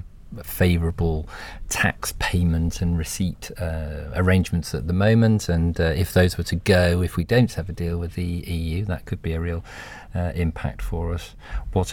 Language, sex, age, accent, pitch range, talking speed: English, male, 40-59, British, 80-95 Hz, 180 wpm